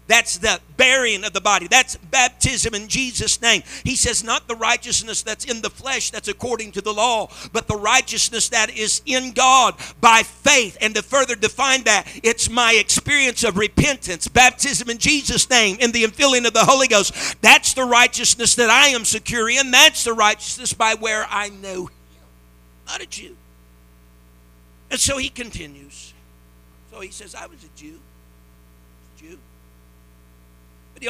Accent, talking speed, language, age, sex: American, 165 wpm, English, 50-69, male